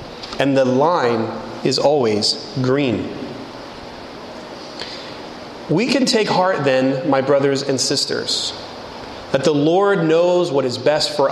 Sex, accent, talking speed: male, American, 120 wpm